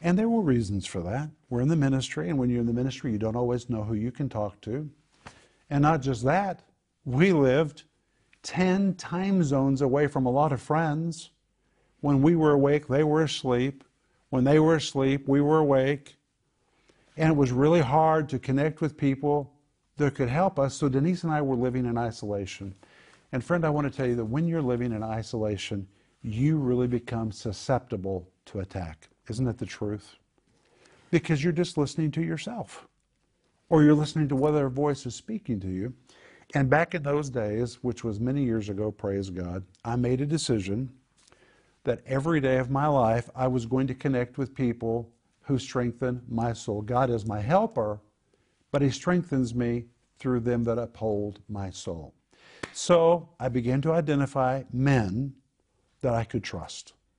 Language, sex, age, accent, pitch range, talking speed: English, male, 50-69, American, 115-150 Hz, 180 wpm